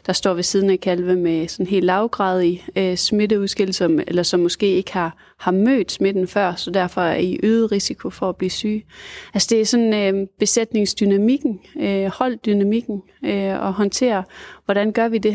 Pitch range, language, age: 185-215 Hz, Danish, 30-49